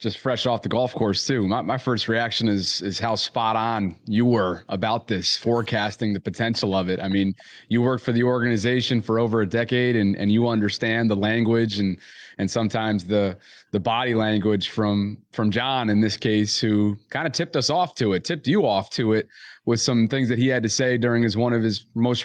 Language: English